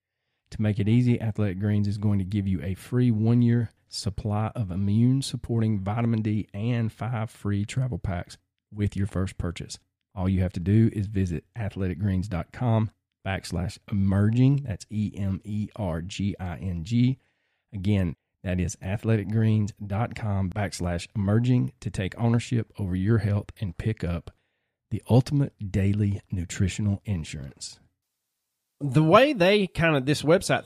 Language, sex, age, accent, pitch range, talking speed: English, male, 40-59, American, 95-120 Hz, 130 wpm